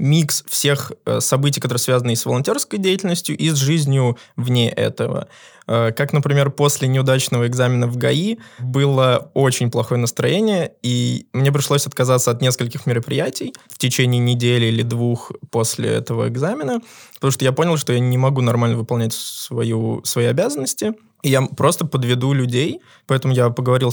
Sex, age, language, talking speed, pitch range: male, 20-39, Russian, 145 wpm, 125-150 Hz